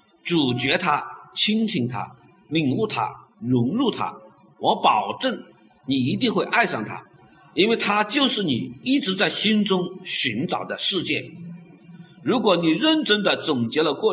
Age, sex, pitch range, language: 50-69, male, 175-280 Hz, Chinese